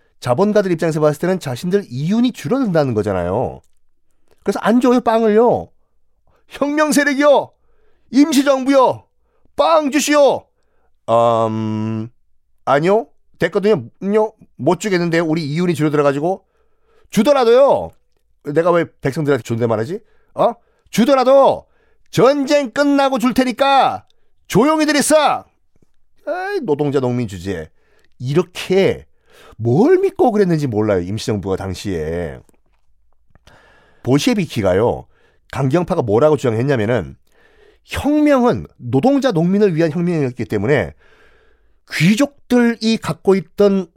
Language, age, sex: Korean, 40-59, male